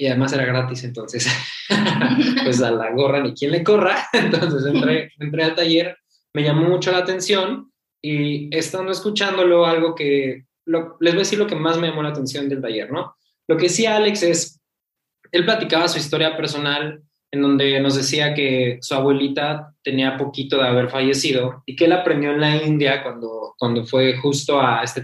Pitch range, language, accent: 130-165 Hz, Spanish, Mexican